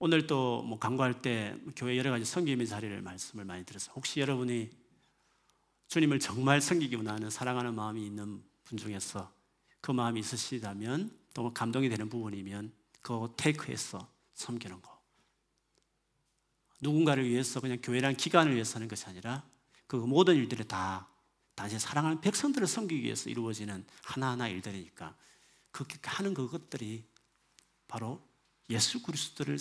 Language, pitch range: Korean, 110-140 Hz